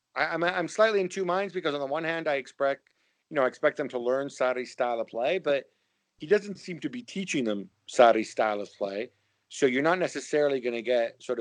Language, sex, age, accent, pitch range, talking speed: English, male, 50-69, American, 110-135 Hz, 230 wpm